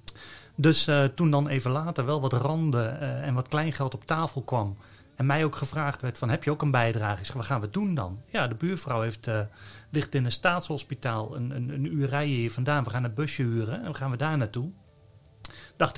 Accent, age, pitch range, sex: Dutch, 40-59, 125-155 Hz, male